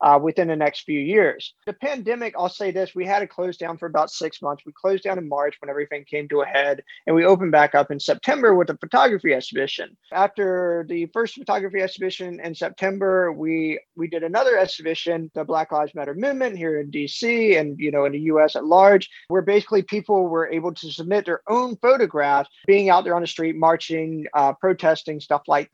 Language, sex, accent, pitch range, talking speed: English, male, American, 155-195 Hz, 210 wpm